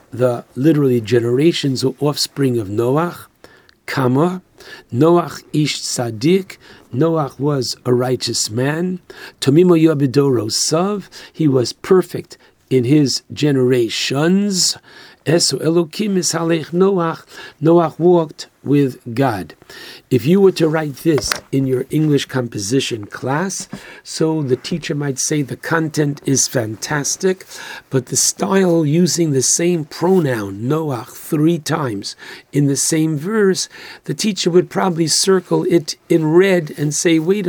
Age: 60-79